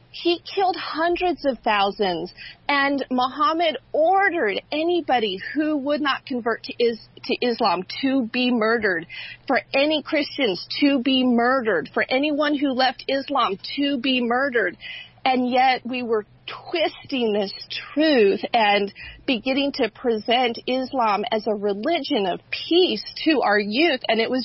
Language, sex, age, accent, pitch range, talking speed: English, female, 40-59, American, 210-275 Hz, 135 wpm